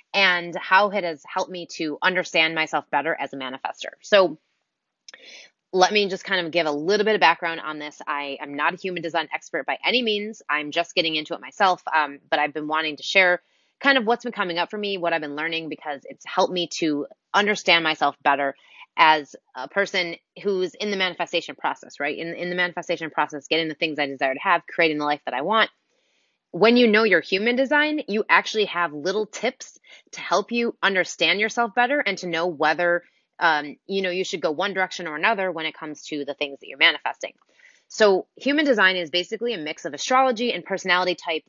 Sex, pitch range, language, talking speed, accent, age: female, 155-200 Hz, English, 215 wpm, American, 20-39